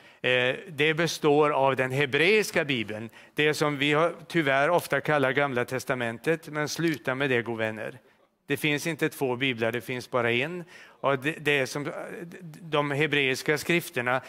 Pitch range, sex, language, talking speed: 120-155 Hz, male, Swedish, 155 wpm